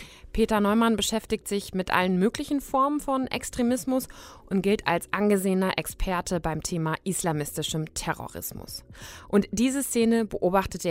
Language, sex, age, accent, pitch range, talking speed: German, female, 20-39, German, 180-210 Hz, 125 wpm